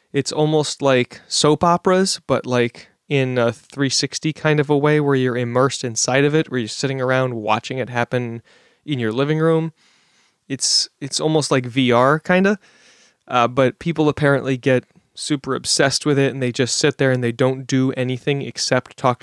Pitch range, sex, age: 125-145 Hz, male, 20-39